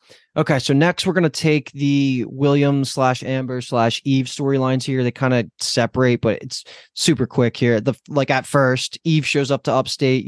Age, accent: 20-39, American